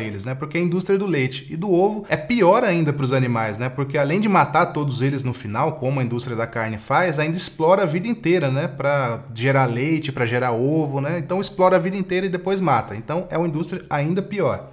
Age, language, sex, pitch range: 20-39, English, male, 130-175 Hz